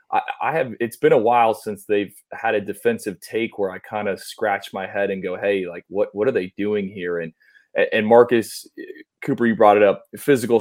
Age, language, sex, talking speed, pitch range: 20-39, English, male, 215 wpm, 95-120 Hz